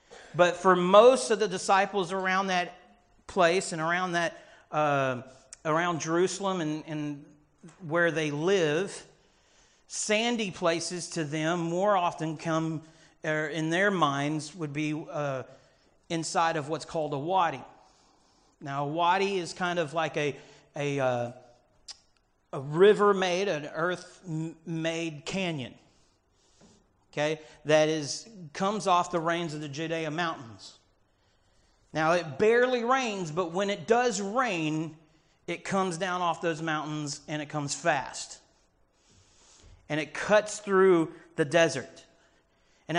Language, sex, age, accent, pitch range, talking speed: English, male, 40-59, American, 150-180 Hz, 130 wpm